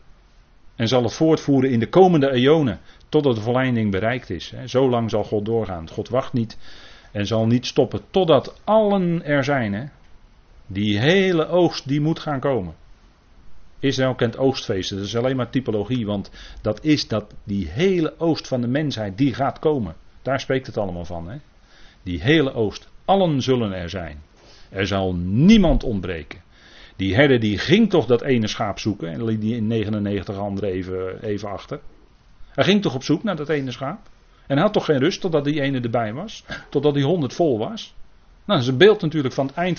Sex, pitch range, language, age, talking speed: male, 110-165 Hz, Dutch, 40-59, 185 wpm